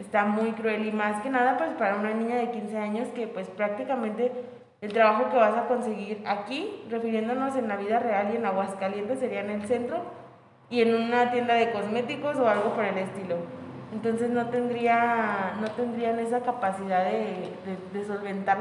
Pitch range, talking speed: 195-230 Hz, 185 wpm